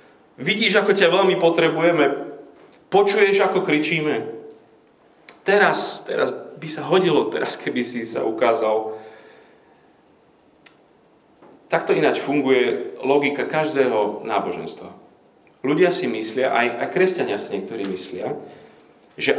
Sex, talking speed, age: male, 105 wpm, 30-49